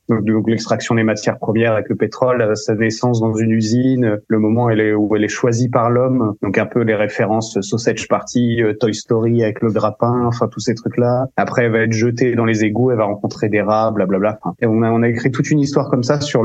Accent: French